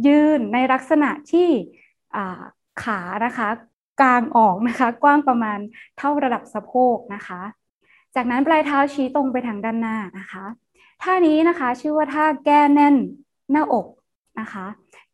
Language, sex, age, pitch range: Thai, female, 20-39, 225-295 Hz